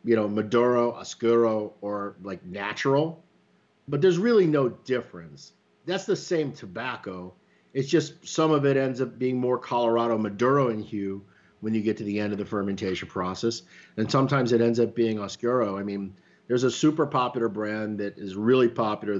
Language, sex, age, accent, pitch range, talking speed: English, male, 50-69, American, 100-125 Hz, 180 wpm